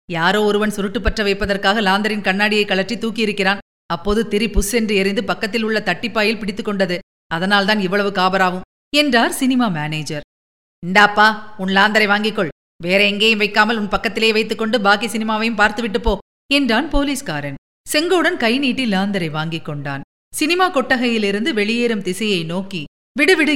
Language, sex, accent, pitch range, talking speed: Tamil, female, native, 190-250 Hz, 125 wpm